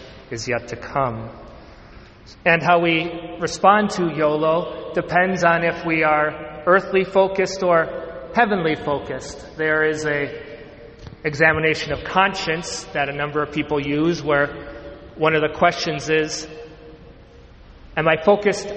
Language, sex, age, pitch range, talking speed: English, male, 40-59, 145-175 Hz, 130 wpm